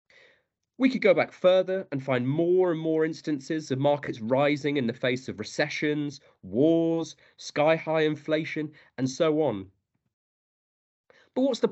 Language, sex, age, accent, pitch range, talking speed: English, male, 30-49, British, 130-175 Hz, 145 wpm